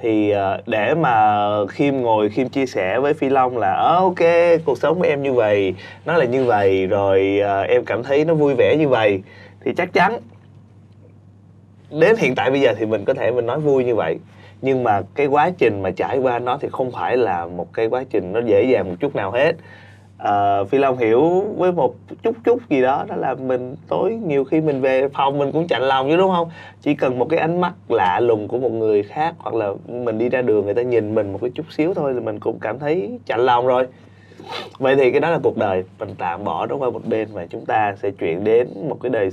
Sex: male